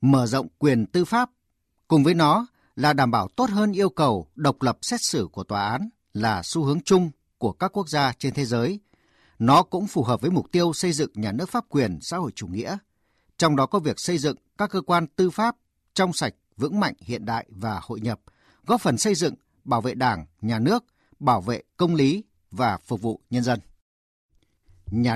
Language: Vietnamese